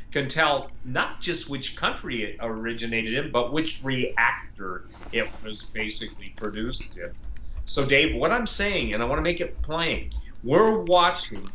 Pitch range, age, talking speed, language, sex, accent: 110-160 Hz, 40-59, 155 wpm, English, male, American